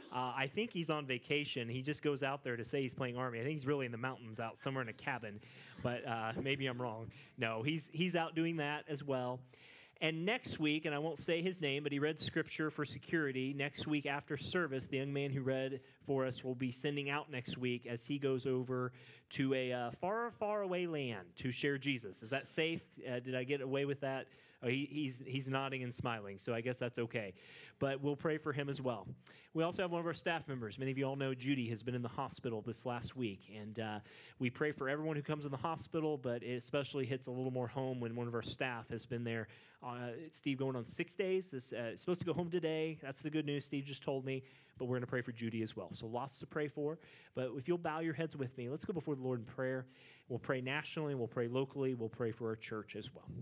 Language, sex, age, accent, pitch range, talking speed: English, male, 30-49, American, 125-150 Hz, 255 wpm